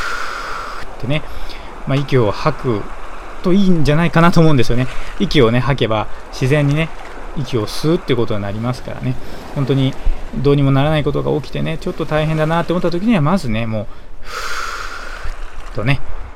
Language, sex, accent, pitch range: Japanese, male, native, 120-160 Hz